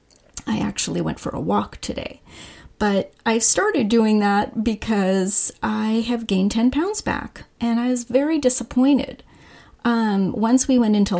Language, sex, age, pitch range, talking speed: English, female, 30-49, 200-265 Hz, 155 wpm